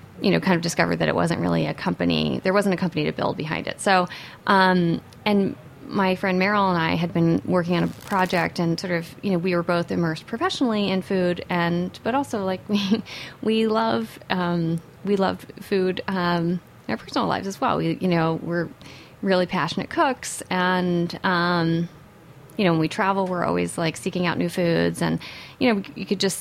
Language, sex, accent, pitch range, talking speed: English, female, American, 165-190 Hz, 205 wpm